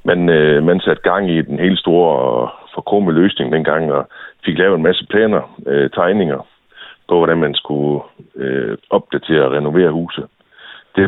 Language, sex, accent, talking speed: Danish, male, native, 170 wpm